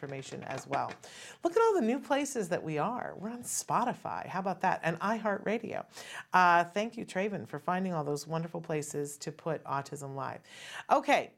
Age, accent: 40-59, American